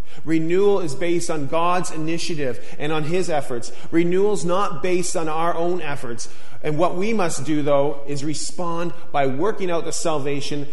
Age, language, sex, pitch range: 40-59, English, male, 100-150 Hz